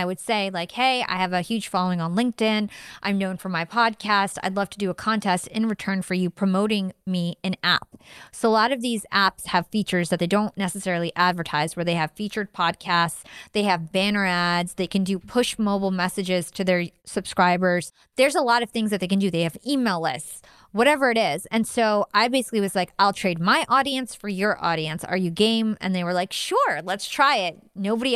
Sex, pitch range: female, 180-230 Hz